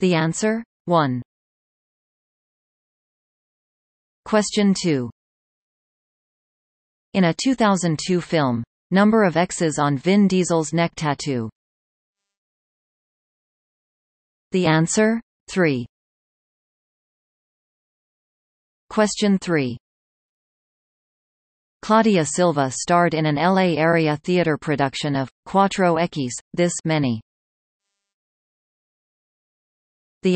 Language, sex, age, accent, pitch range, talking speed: English, female, 40-59, American, 140-195 Hz, 75 wpm